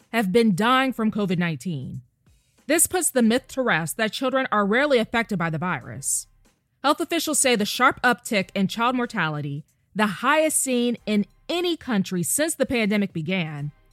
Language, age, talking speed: English, 20-39, 165 wpm